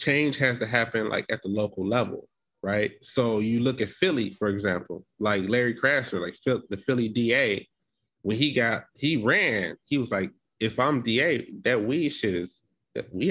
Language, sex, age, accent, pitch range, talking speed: English, male, 20-39, American, 100-120 Hz, 180 wpm